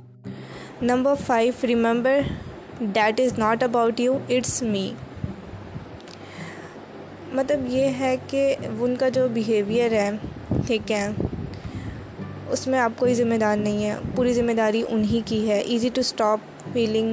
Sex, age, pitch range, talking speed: female, 20-39, 210-240 Hz, 135 wpm